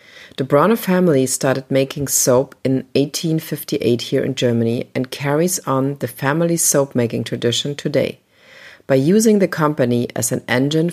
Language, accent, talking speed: English, German, 150 wpm